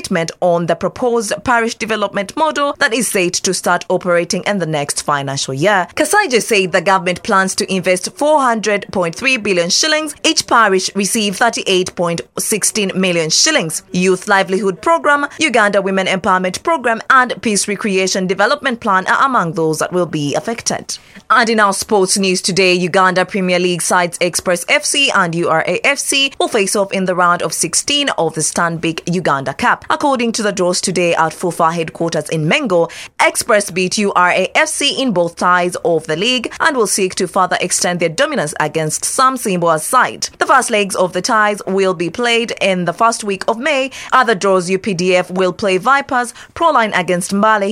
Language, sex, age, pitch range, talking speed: English, female, 20-39, 180-235 Hz, 170 wpm